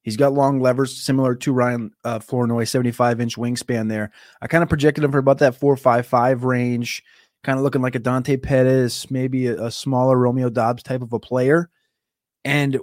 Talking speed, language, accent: 185 wpm, English, American